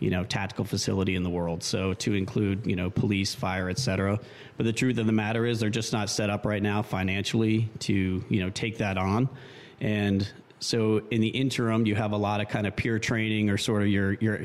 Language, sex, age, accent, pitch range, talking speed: English, male, 30-49, American, 100-120 Hz, 230 wpm